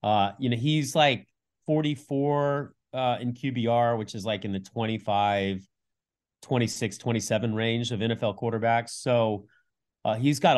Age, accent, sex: 30-49, American, male